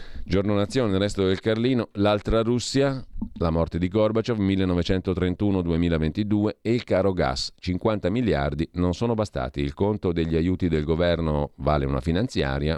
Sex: male